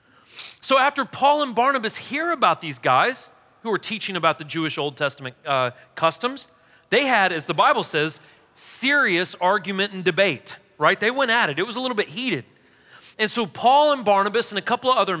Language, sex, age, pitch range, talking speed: English, male, 40-59, 160-225 Hz, 195 wpm